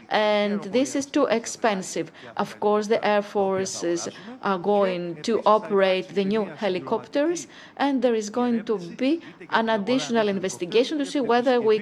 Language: Greek